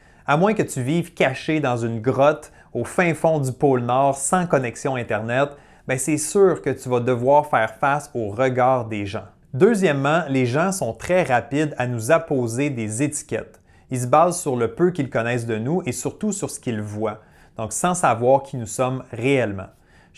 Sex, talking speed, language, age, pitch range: male, 195 wpm, French, 30-49, 120-160 Hz